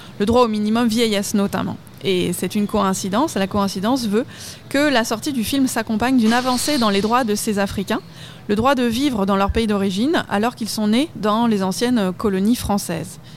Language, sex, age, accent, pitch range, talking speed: French, female, 20-39, French, 195-235 Hz, 200 wpm